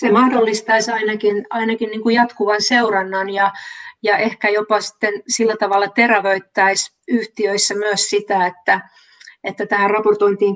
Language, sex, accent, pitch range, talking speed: Finnish, female, native, 200-240 Hz, 125 wpm